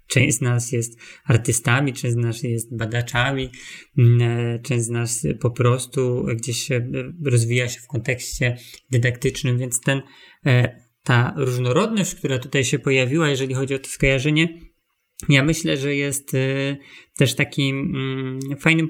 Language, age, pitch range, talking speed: Polish, 20-39, 125-150 Hz, 135 wpm